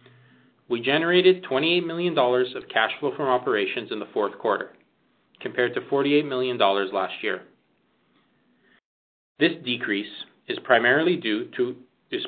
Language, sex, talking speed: English, male, 125 wpm